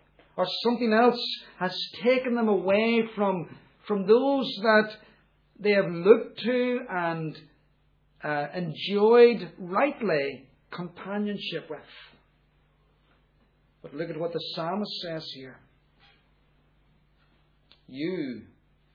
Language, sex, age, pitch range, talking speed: English, male, 60-79, 155-225 Hz, 95 wpm